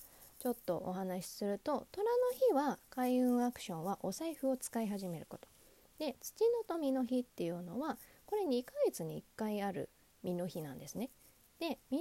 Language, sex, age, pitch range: Japanese, female, 20-39, 185-285 Hz